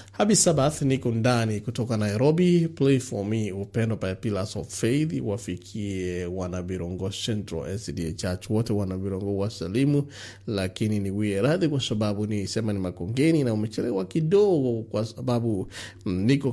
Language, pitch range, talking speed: English, 100-130 Hz, 140 wpm